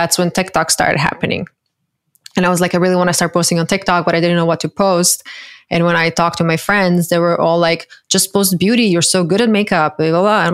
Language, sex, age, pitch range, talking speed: English, female, 20-39, 170-190 Hz, 260 wpm